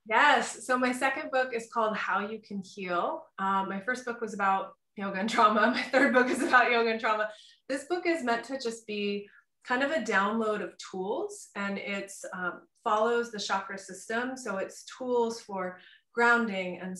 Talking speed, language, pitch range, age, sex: 185 wpm, English, 190-240 Hz, 20-39, female